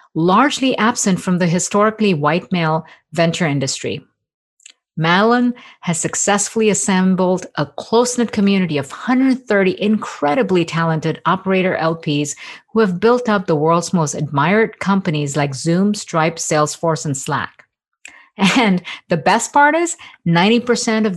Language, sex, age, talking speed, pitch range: English, female, 50-69, 125 wpm, 160-210 Hz